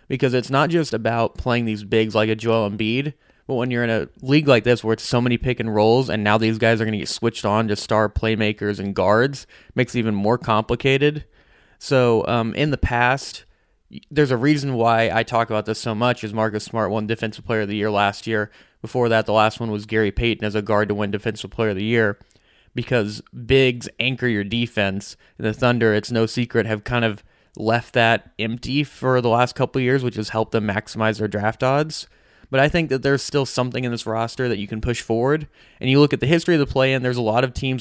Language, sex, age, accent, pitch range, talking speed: English, male, 20-39, American, 110-125 Hz, 240 wpm